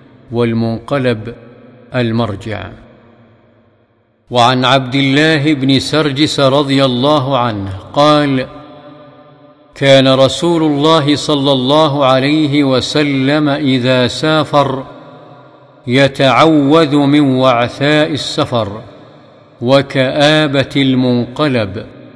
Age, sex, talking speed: 50-69, male, 70 wpm